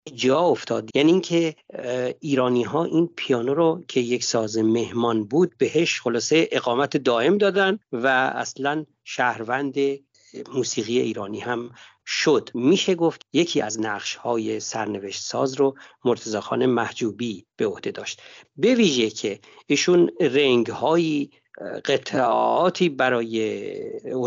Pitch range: 115-155 Hz